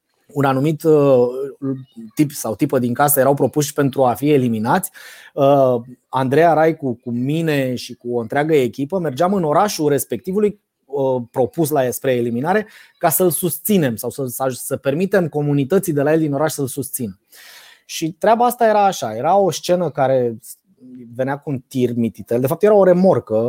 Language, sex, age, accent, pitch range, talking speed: Romanian, male, 20-39, native, 130-195 Hz, 165 wpm